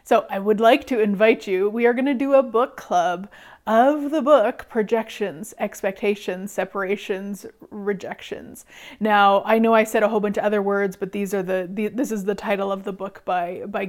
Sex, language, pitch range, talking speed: female, English, 200-240 Hz, 205 wpm